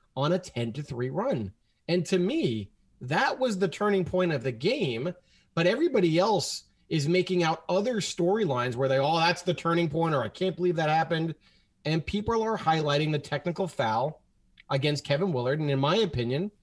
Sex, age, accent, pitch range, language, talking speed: male, 30-49, American, 150-195 Hz, English, 190 wpm